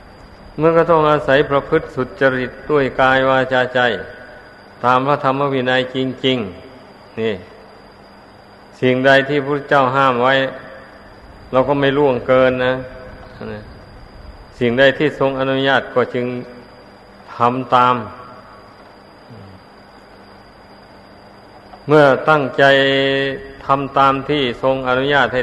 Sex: male